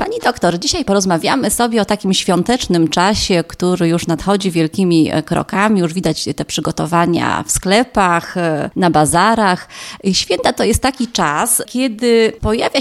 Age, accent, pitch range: 30-49, native, 185-235 Hz